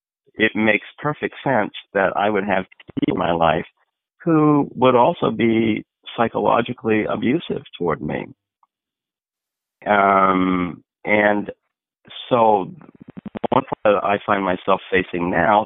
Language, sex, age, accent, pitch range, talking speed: English, male, 50-69, American, 95-115 Hz, 115 wpm